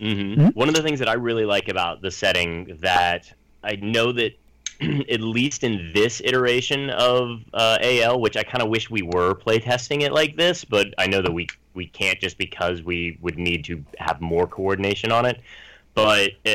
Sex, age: male, 30-49